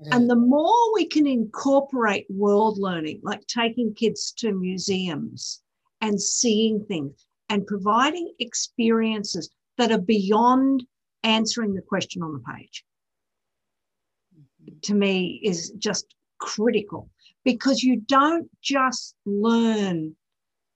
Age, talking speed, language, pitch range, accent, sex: 50-69, 110 wpm, English, 190-235 Hz, Australian, female